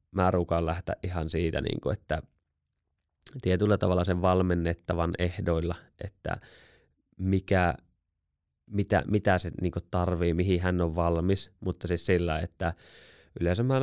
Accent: native